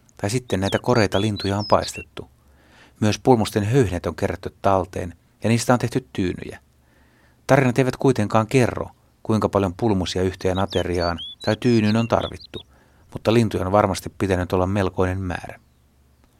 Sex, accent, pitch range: male, native, 85-110 Hz